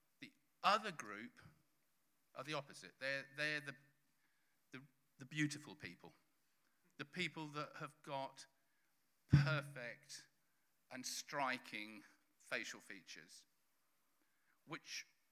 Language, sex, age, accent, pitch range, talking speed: English, male, 50-69, British, 140-180 Hz, 90 wpm